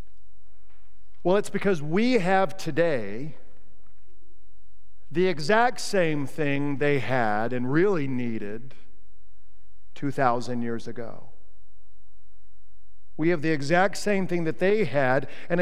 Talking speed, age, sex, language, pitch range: 110 wpm, 50-69, male, English, 110-170 Hz